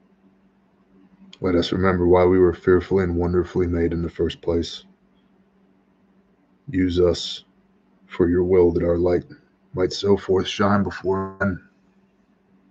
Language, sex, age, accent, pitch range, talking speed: English, male, 30-49, American, 85-95 Hz, 130 wpm